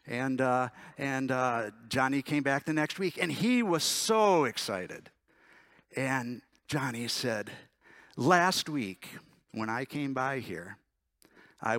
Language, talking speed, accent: English, 130 wpm, American